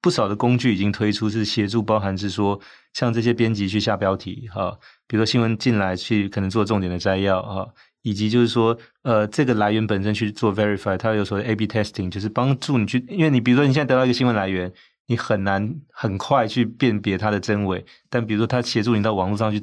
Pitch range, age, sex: 105-120 Hz, 30-49, male